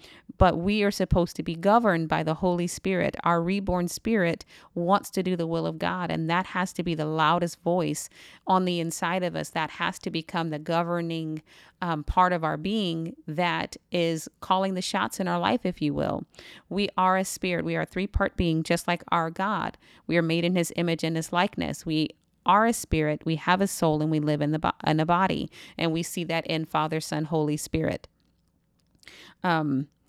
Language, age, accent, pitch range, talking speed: English, 30-49, American, 165-185 Hz, 210 wpm